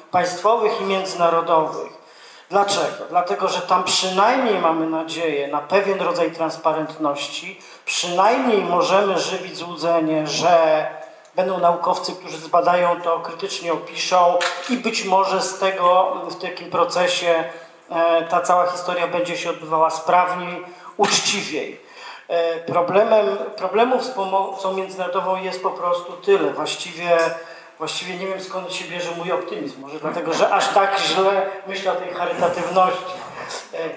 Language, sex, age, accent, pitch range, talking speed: Polish, male, 40-59, native, 165-190 Hz, 120 wpm